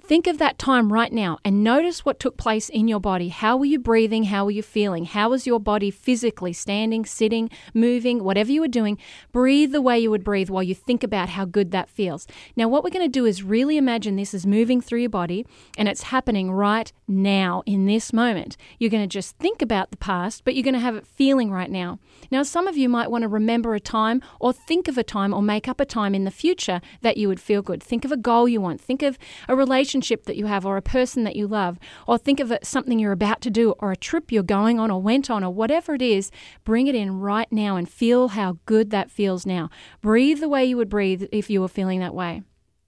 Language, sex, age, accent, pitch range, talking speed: English, female, 40-59, Australian, 200-250 Hz, 250 wpm